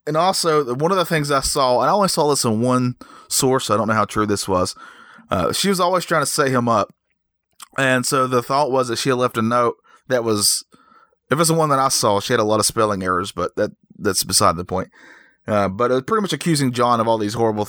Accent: American